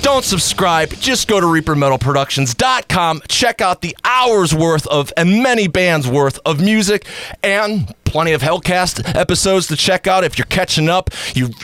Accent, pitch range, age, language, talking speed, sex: American, 135-190 Hz, 30-49, English, 160 wpm, male